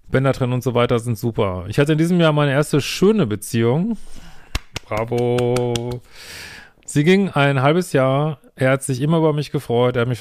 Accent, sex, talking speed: German, male, 190 wpm